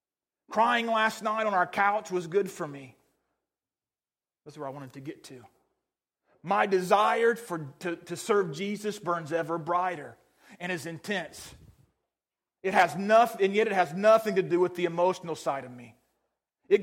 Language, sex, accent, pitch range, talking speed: English, male, American, 165-225 Hz, 170 wpm